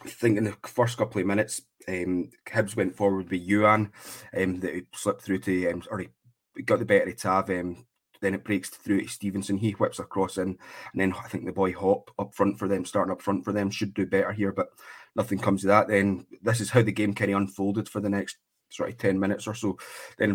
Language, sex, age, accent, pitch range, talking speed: English, male, 20-39, British, 95-105 Hz, 240 wpm